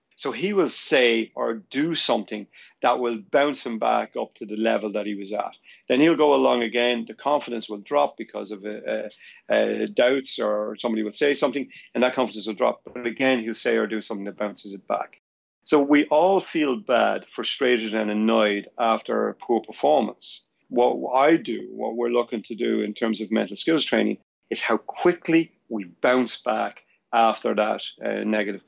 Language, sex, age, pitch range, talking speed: English, male, 40-59, 110-135 Hz, 190 wpm